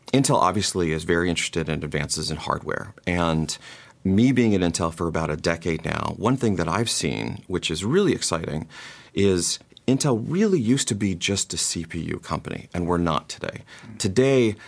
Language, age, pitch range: English, 30-49, 85-110 Hz